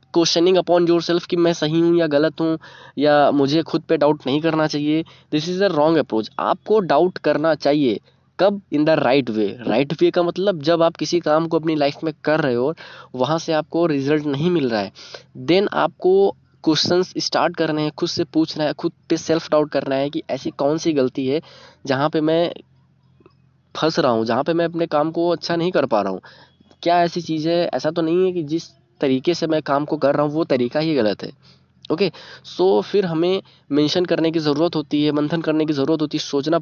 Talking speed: 225 wpm